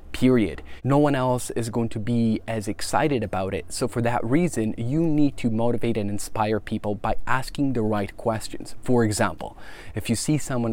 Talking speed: 190 wpm